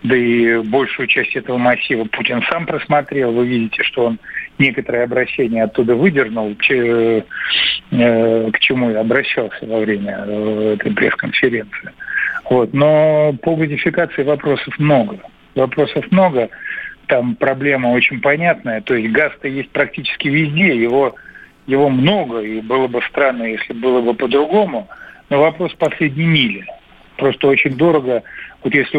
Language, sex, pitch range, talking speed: Russian, male, 120-145 Hz, 130 wpm